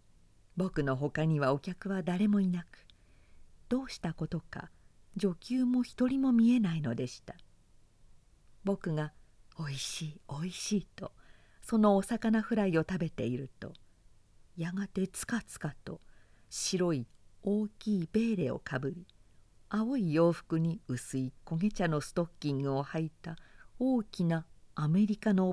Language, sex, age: Japanese, female, 50-69